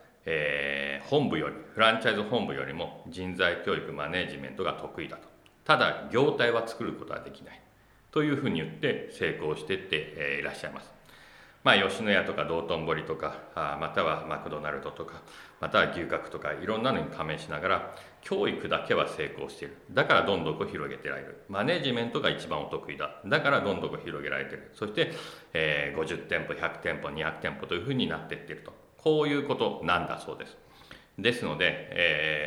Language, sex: Japanese, male